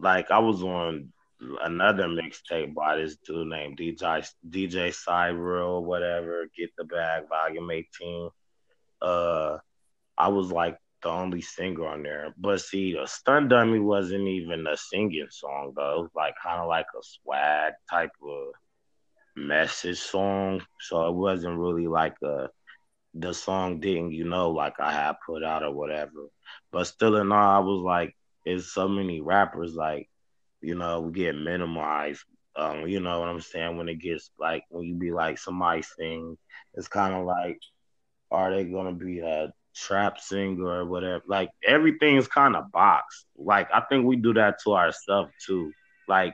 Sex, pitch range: male, 85-100 Hz